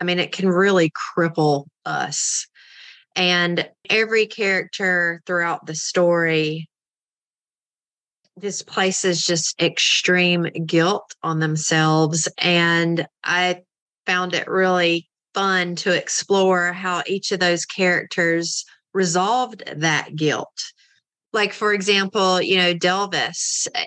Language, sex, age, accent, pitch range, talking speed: English, female, 30-49, American, 170-195 Hz, 110 wpm